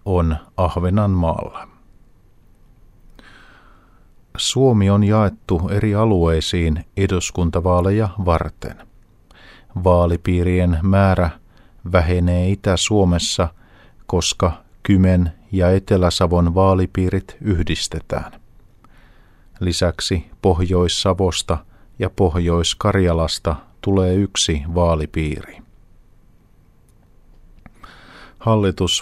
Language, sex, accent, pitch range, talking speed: Finnish, male, native, 85-100 Hz, 55 wpm